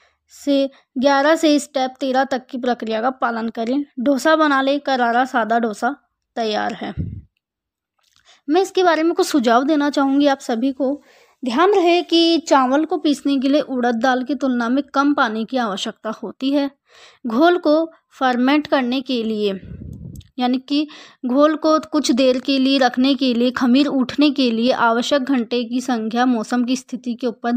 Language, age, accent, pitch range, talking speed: English, 20-39, Indian, 240-285 Hz, 170 wpm